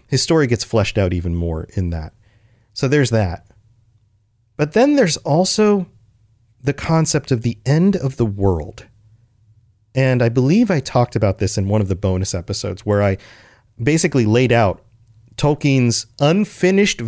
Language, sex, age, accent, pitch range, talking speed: English, male, 30-49, American, 105-130 Hz, 155 wpm